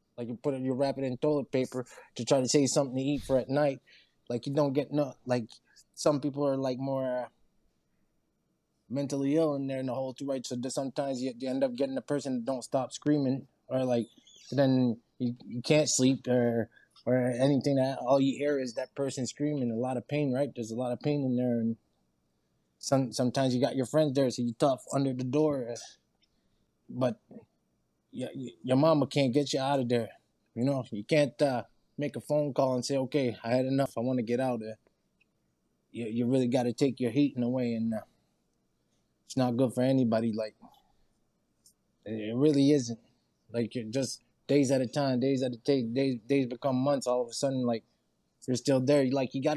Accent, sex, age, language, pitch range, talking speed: American, male, 20-39, English, 125-140 Hz, 215 wpm